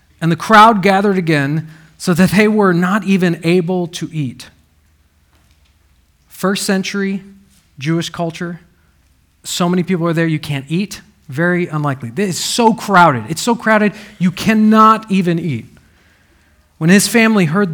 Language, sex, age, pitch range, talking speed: English, male, 40-59, 155-220 Hz, 140 wpm